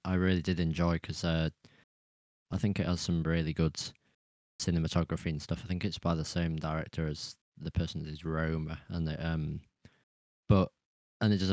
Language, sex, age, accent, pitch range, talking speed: English, male, 20-39, British, 80-95 Hz, 185 wpm